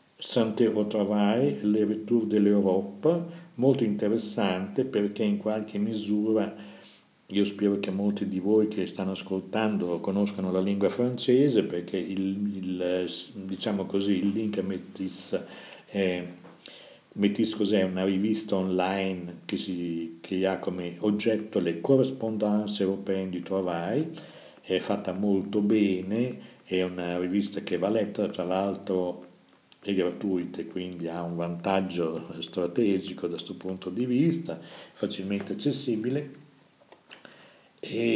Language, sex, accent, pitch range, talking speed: Italian, male, native, 95-110 Hz, 120 wpm